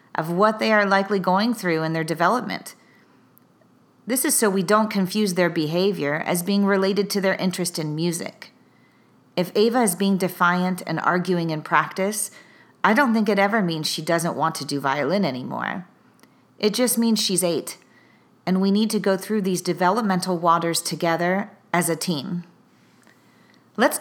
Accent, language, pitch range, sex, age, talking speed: American, English, 175-215 Hz, female, 40-59, 165 wpm